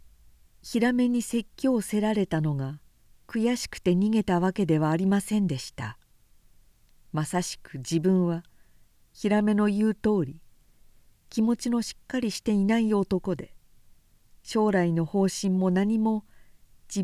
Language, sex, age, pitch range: Japanese, female, 50-69, 145-215 Hz